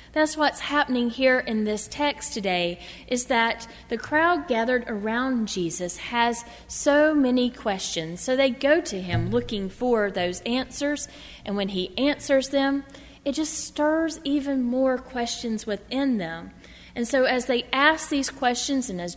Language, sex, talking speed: English, female, 155 wpm